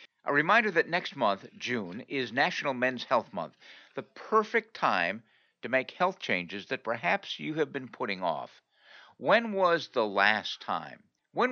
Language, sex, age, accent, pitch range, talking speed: English, male, 60-79, American, 115-165 Hz, 160 wpm